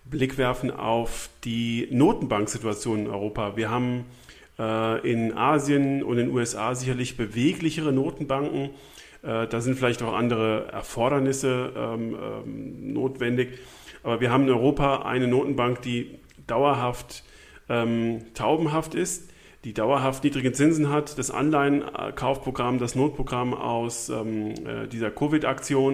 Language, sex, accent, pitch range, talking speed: German, male, German, 115-140 Hz, 125 wpm